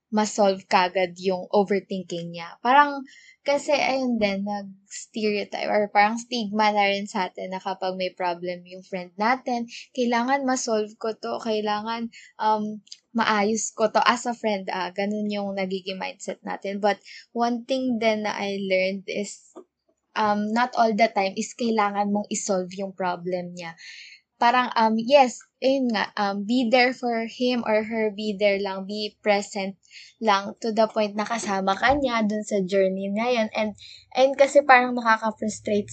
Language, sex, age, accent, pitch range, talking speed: Filipino, female, 20-39, native, 195-230 Hz, 160 wpm